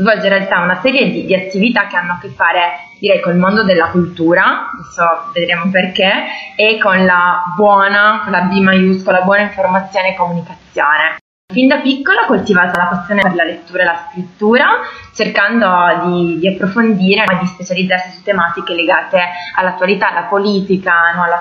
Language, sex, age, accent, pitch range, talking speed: Italian, female, 20-39, native, 175-200 Hz, 170 wpm